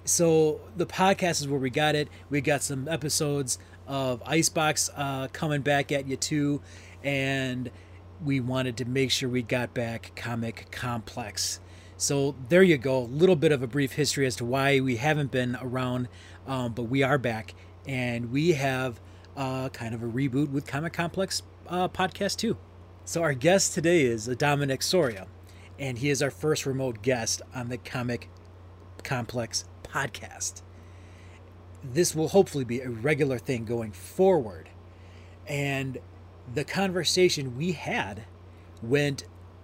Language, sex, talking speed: English, male, 155 wpm